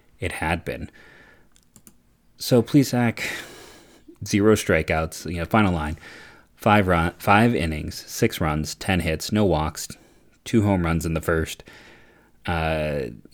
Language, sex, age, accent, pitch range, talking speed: English, male, 30-49, American, 80-100 Hz, 130 wpm